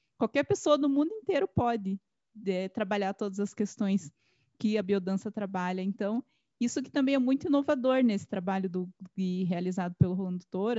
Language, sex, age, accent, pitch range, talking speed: Portuguese, female, 20-39, Brazilian, 200-255 Hz, 165 wpm